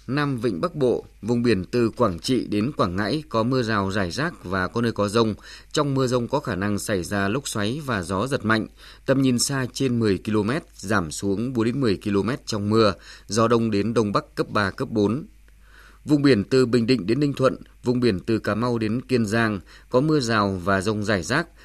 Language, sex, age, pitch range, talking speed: Vietnamese, male, 20-39, 105-130 Hz, 225 wpm